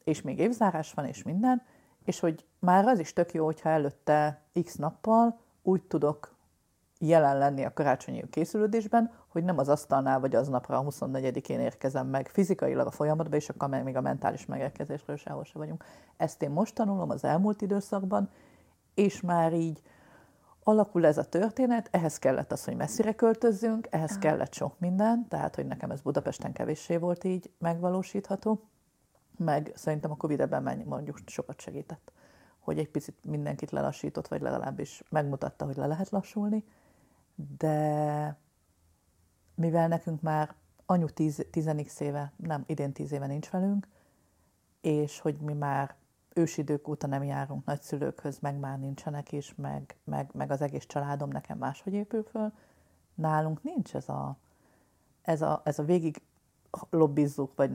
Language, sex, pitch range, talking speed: Hungarian, female, 145-185 Hz, 155 wpm